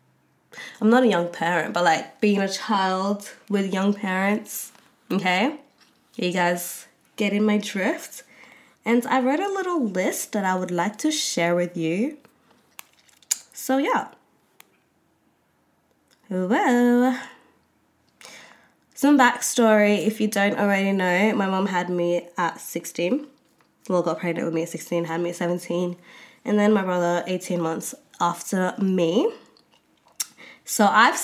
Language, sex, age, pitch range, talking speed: English, female, 20-39, 175-240 Hz, 135 wpm